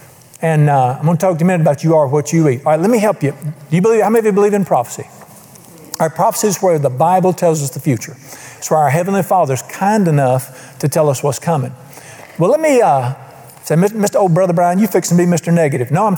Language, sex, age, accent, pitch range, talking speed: English, male, 50-69, American, 140-185 Hz, 265 wpm